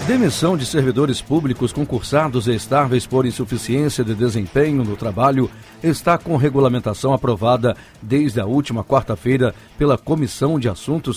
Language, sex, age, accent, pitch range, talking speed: Portuguese, male, 60-79, Brazilian, 115-145 Hz, 135 wpm